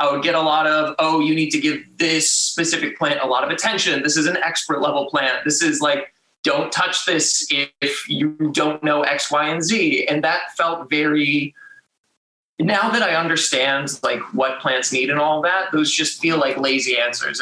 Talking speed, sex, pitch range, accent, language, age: 205 wpm, male, 140-165 Hz, American, English, 20-39